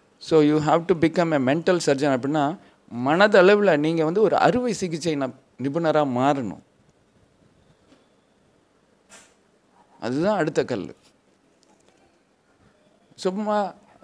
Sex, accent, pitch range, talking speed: male, native, 145-185 Hz, 100 wpm